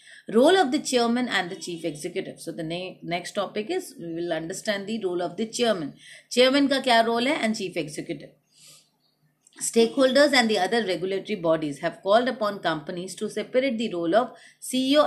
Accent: Indian